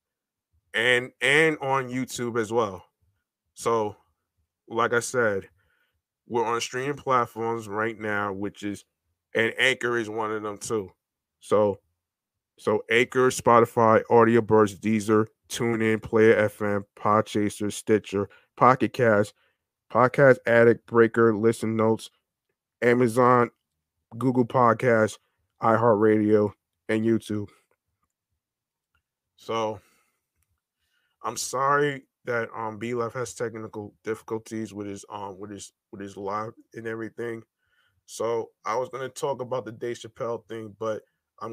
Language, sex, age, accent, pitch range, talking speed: English, male, 20-39, American, 105-120 Hz, 120 wpm